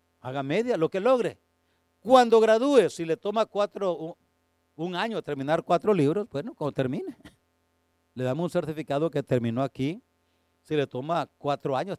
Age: 50-69